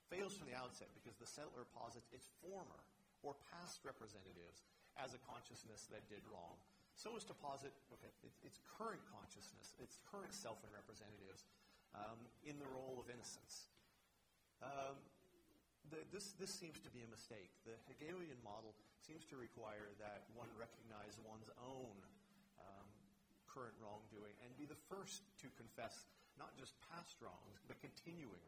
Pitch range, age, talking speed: 110-140 Hz, 40-59, 155 wpm